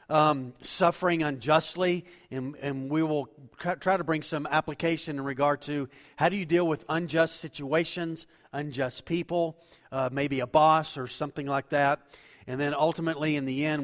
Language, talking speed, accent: English, 170 wpm, American